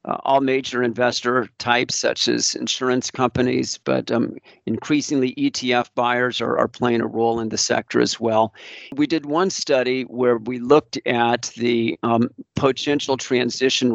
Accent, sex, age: American, male, 50-69